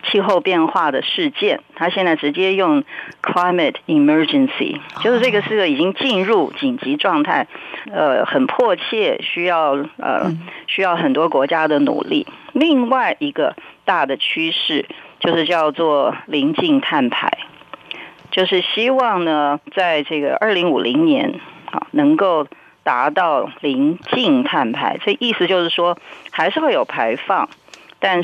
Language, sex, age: Chinese, female, 40-59